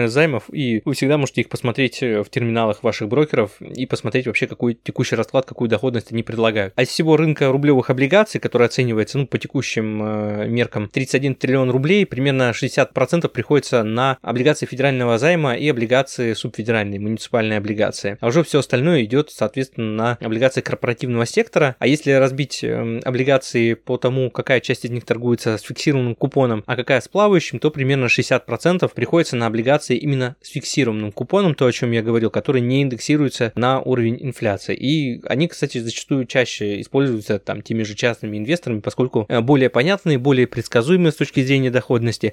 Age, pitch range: 20-39, 115-140 Hz